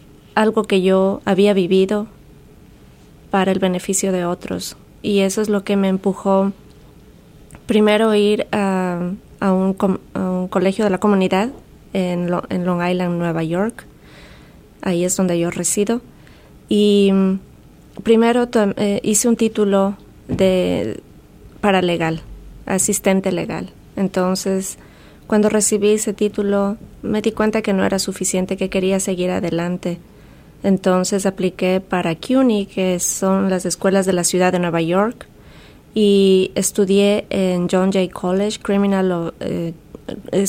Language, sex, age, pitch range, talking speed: English, female, 20-39, 185-205 Hz, 125 wpm